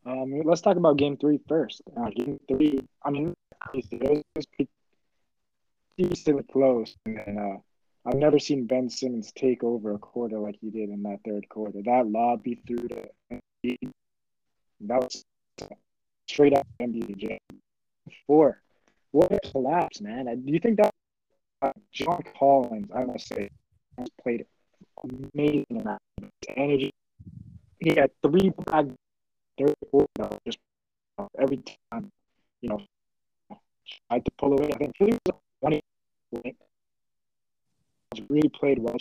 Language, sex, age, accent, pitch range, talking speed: English, male, 20-39, American, 115-150 Hz, 145 wpm